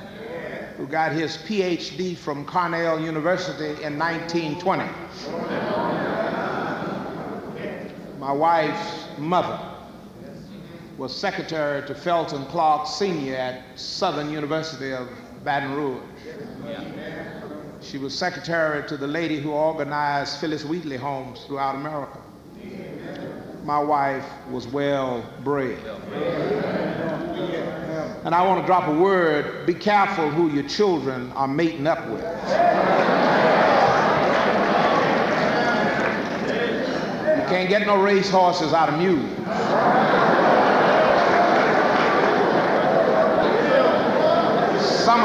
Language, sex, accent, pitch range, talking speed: English, male, American, 145-175 Hz, 90 wpm